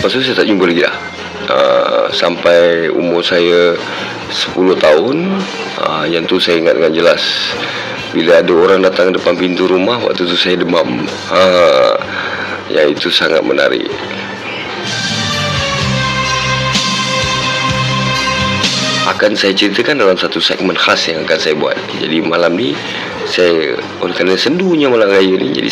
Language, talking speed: Malay, 135 wpm